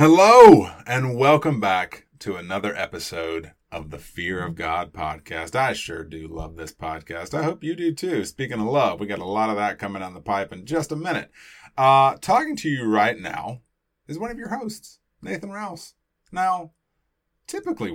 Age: 30-49